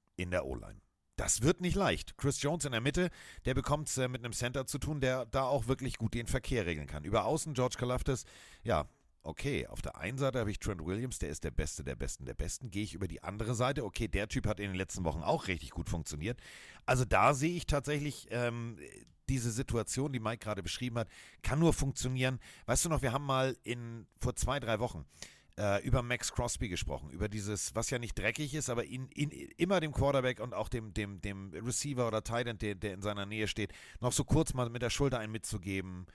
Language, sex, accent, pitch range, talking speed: German, male, German, 100-130 Hz, 230 wpm